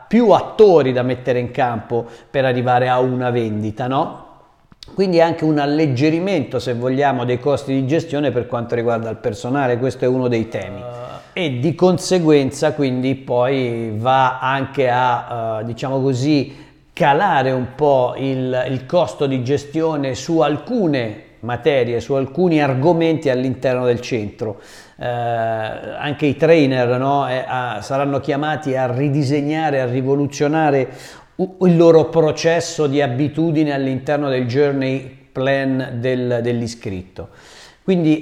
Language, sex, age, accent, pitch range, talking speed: Italian, male, 40-59, native, 125-155 Hz, 135 wpm